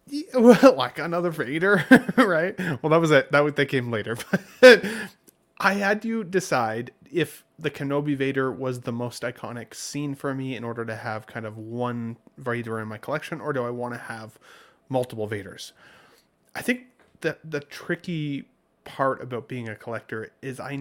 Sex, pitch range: male, 120-160 Hz